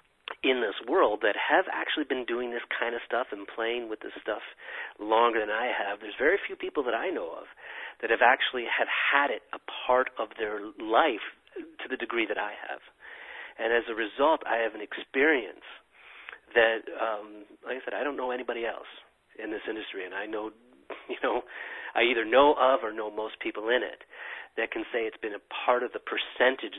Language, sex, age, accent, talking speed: English, male, 40-59, American, 205 wpm